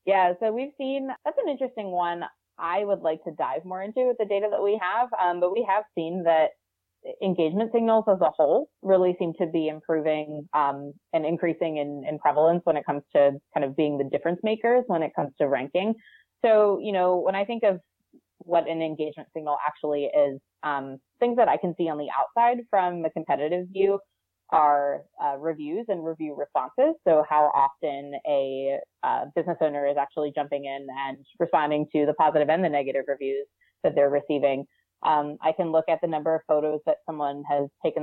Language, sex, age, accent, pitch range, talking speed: English, female, 20-39, American, 150-200 Hz, 200 wpm